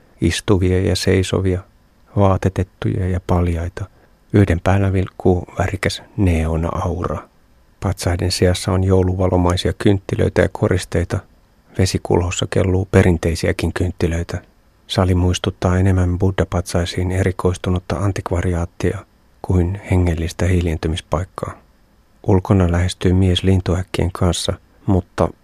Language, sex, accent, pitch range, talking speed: Finnish, male, native, 90-95 Hz, 90 wpm